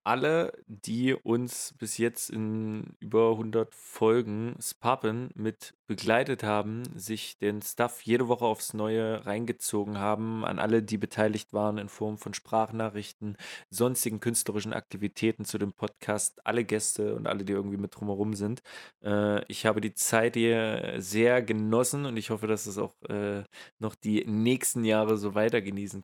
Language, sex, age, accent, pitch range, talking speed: German, male, 20-39, German, 100-115 Hz, 150 wpm